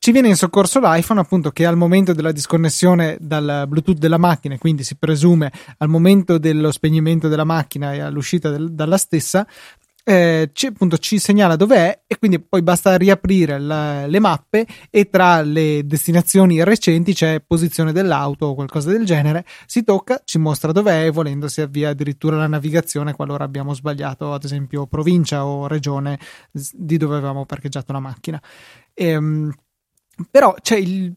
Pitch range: 155-190 Hz